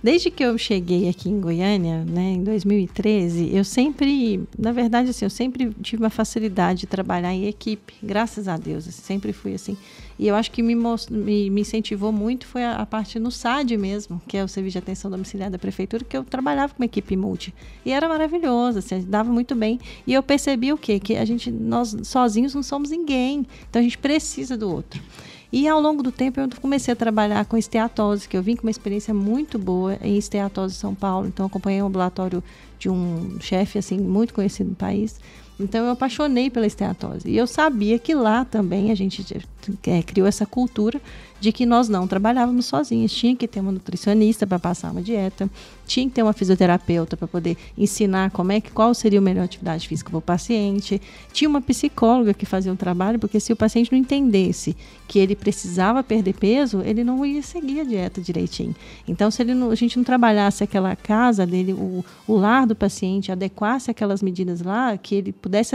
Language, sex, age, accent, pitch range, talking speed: Portuguese, female, 40-59, Brazilian, 195-240 Hz, 205 wpm